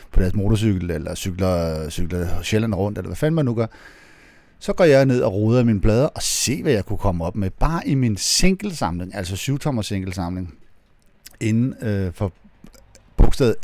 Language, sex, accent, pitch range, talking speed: Danish, male, native, 90-125 Hz, 180 wpm